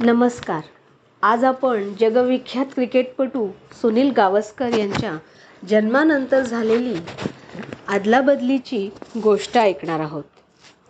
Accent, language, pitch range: native, Marathi, 205-260 Hz